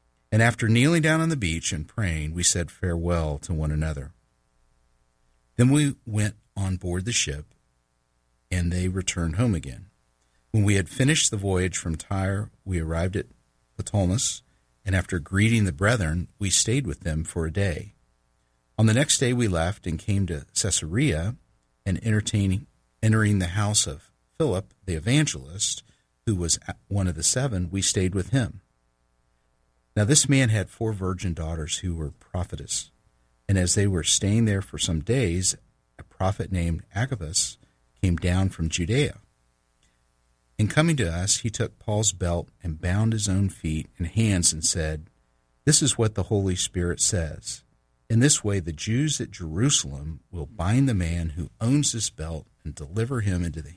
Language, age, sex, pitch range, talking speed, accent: English, 50-69, male, 75-105 Hz, 170 wpm, American